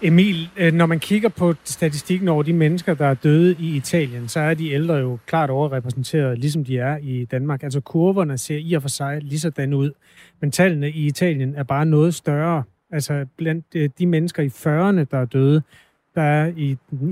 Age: 30-49